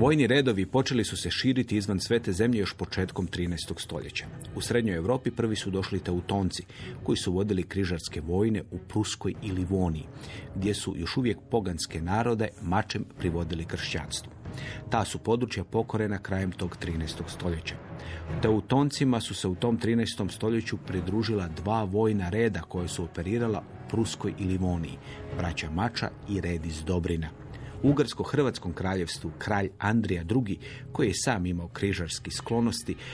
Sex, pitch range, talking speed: male, 90-115 Hz, 150 wpm